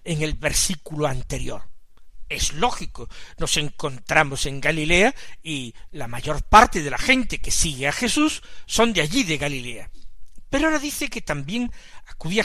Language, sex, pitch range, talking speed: Spanish, male, 150-230 Hz, 155 wpm